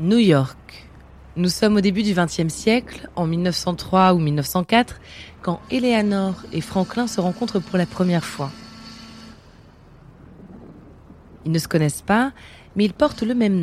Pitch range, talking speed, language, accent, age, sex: 165-215 Hz, 145 wpm, French, French, 30-49, female